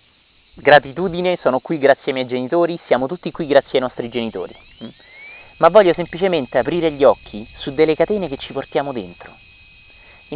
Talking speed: 160 wpm